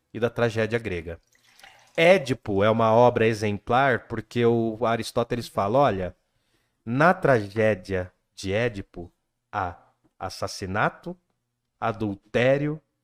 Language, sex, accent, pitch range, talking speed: Portuguese, male, Brazilian, 110-150 Hz, 95 wpm